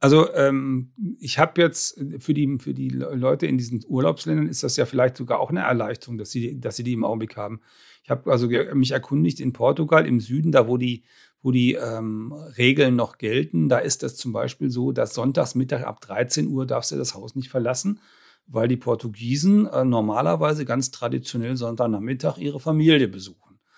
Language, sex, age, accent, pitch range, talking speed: German, male, 40-59, German, 125-160 Hz, 195 wpm